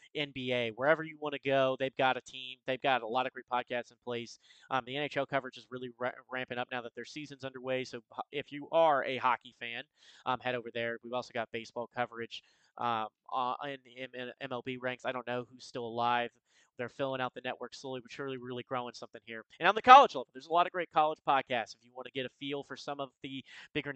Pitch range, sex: 125-145 Hz, male